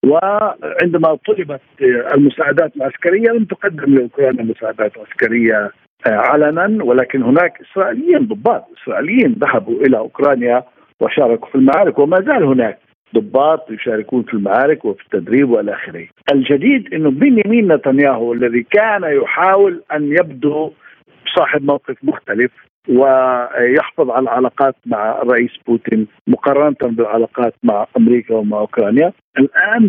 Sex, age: male, 50-69